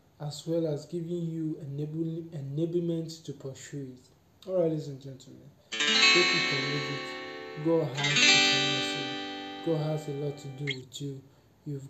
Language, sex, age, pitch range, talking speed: English, male, 20-39, 135-155 Hz, 130 wpm